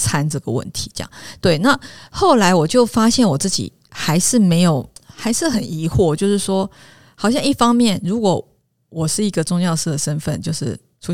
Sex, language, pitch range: female, Chinese, 160-210 Hz